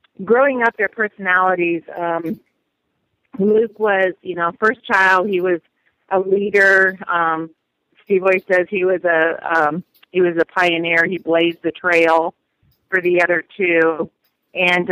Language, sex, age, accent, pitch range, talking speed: English, female, 40-59, American, 170-195 Hz, 145 wpm